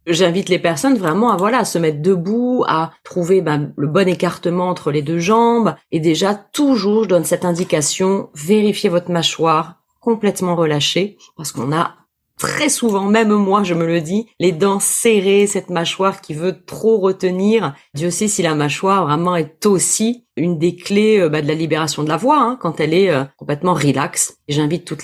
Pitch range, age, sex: 160-215 Hz, 30-49, female